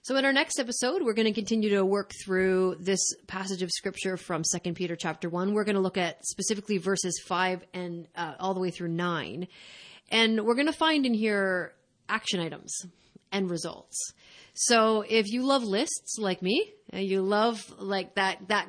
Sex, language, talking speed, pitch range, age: female, English, 190 wpm, 180-205 Hz, 30-49